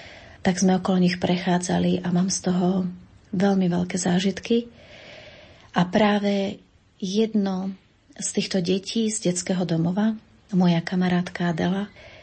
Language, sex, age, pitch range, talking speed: Slovak, female, 30-49, 180-195 Hz, 120 wpm